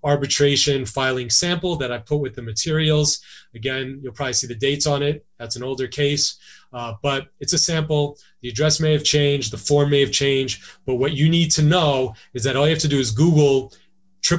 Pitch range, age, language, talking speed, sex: 120-150 Hz, 30-49, English, 215 wpm, male